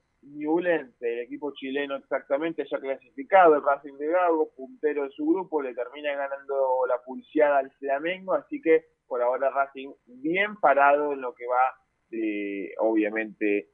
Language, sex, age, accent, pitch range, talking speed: Spanish, male, 20-39, Argentinian, 125-160 Hz, 150 wpm